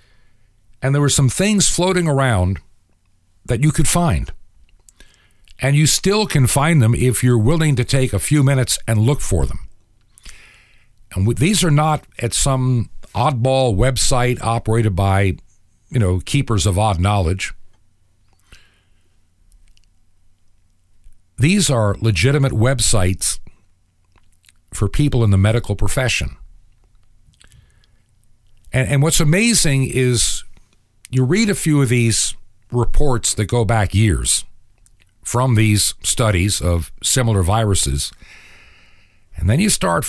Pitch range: 95-130 Hz